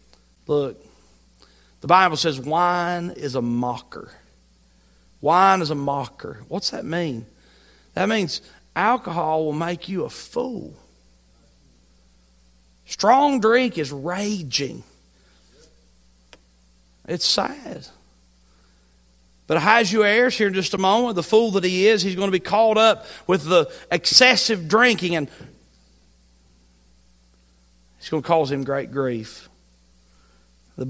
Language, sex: English, male